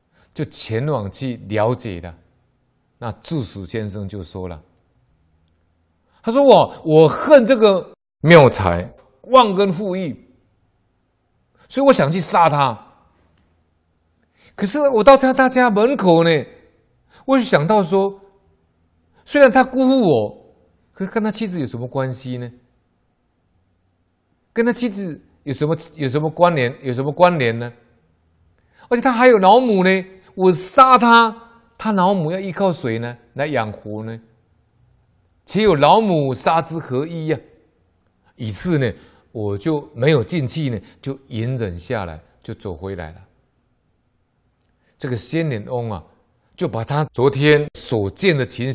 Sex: male